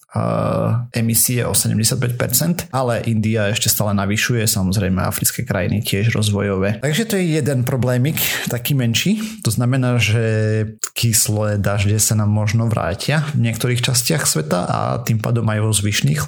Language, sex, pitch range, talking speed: Slovak, male, 110-130 Hz, 145 wpm